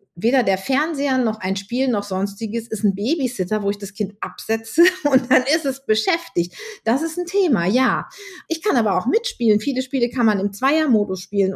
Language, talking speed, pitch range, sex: German, 195 wpm, 200-250 Hz, female